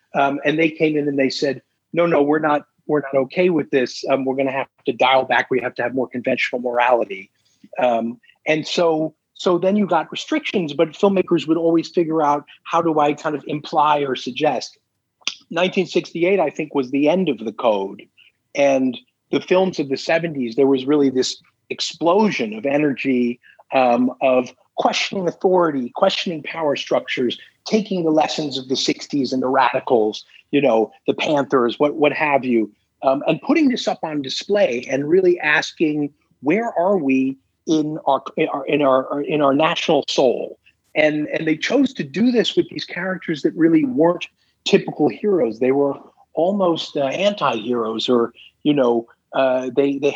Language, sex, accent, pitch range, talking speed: English, male, American, 130-175 Hz, 180 wpm